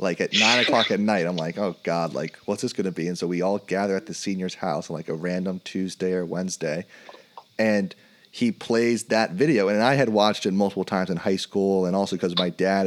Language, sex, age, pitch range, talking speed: English, male, 30-49, 95-115 Hz, 240 wpm